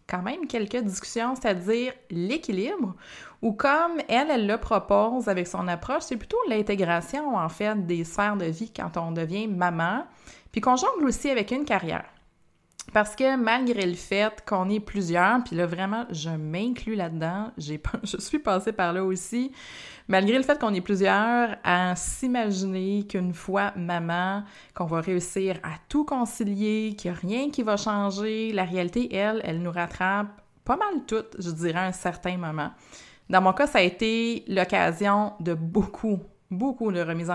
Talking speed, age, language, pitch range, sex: 170 wpm, 20-39, French, 180-230 Hz, female